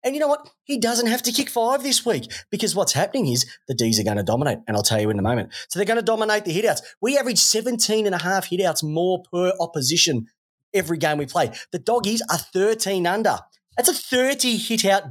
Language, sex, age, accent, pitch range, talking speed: English, male, 30-49, Australian, 135-210 Hz, 230 wpm